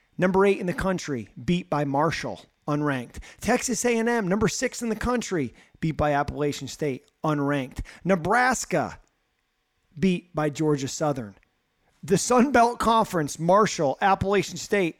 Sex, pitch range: male, 135-165 Hz